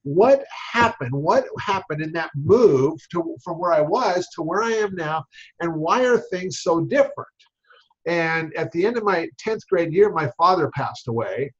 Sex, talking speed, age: male, 185 wpm, 50-69